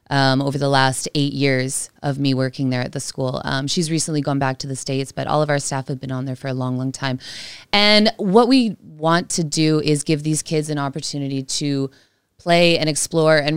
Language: English